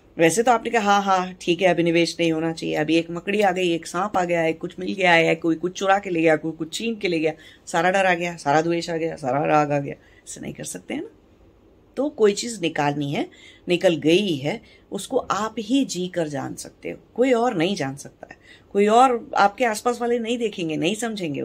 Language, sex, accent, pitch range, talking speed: English, female, Indian, 165-215 Hz, 210 wpm